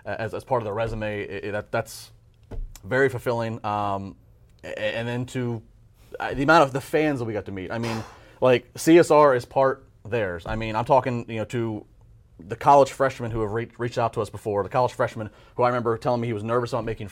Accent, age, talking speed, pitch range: American, 30-49, 230 wpm, 100-120 Hz